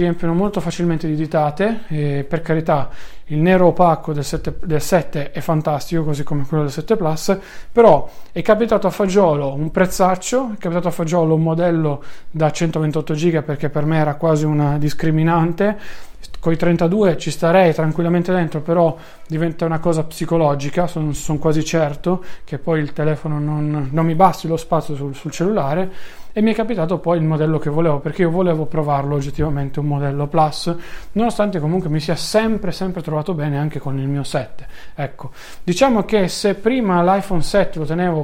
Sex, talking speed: male, 175 wpm